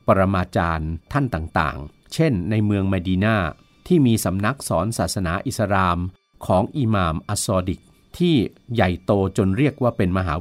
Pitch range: 95-125 Hz